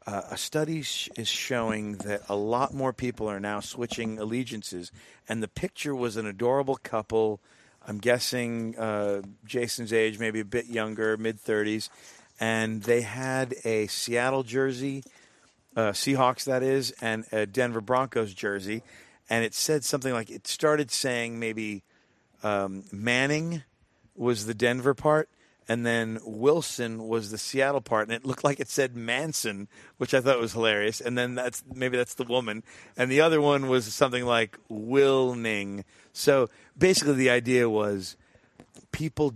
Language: English